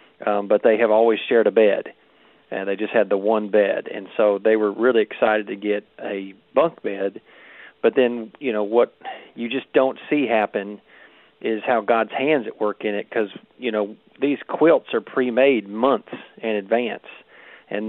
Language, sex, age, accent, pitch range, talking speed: English, male, 40-59, American, 105-115 Hz, 185 wpm